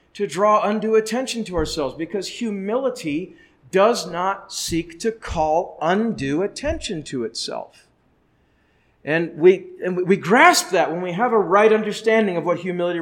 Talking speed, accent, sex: 150 wpm, American, male